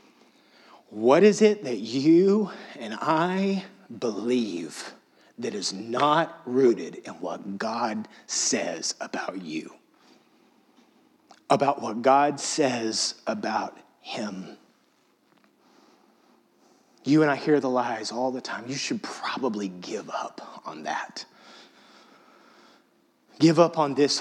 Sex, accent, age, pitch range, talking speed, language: male, American, 30-49, 125-165 Hz, 110 wpm, English